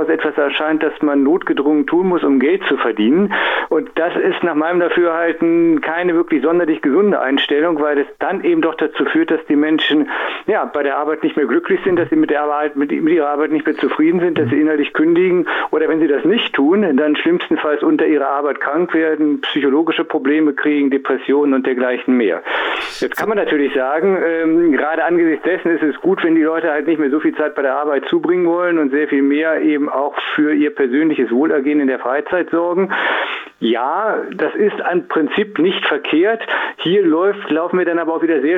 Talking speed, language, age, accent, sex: 205 wpm, German, 50-69, German, male